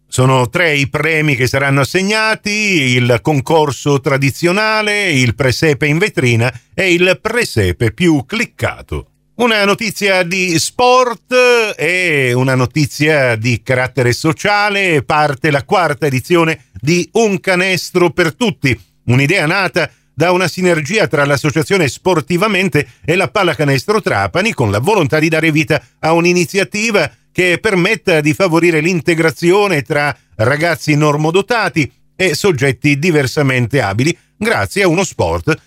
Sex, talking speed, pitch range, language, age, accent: male, 125 wpm, 130-180 Hz, Italian, 50-69, native